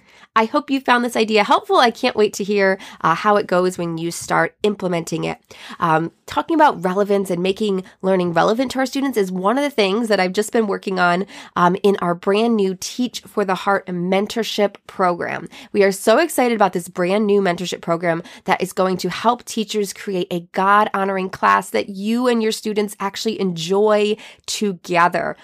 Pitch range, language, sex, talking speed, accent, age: 180-225 Hz, English, female, 195 wpm, American, 20-39